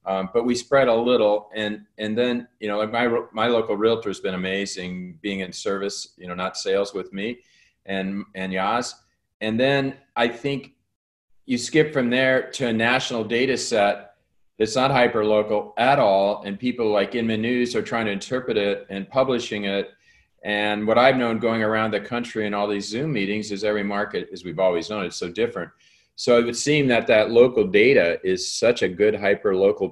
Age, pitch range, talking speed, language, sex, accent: 40-59, 100-130 Hz, 200 wpm, English, male, American